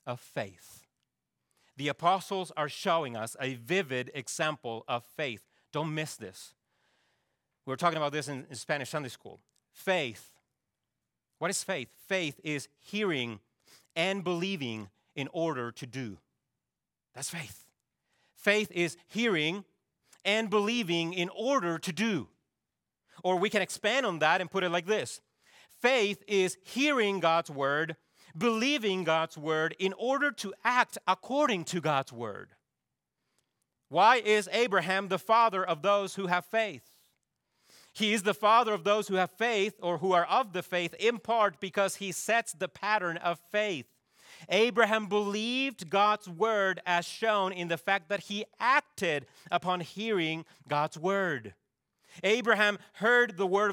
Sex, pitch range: male, 155-210 Hz